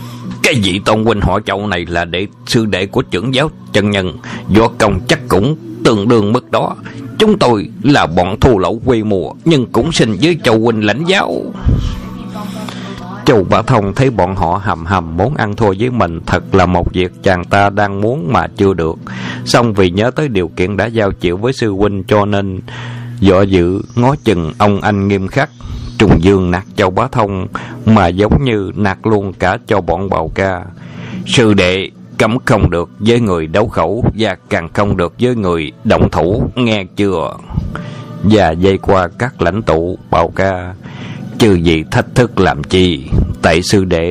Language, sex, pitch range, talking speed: Vietnamese, male, 90-115 Hz, 190 wpm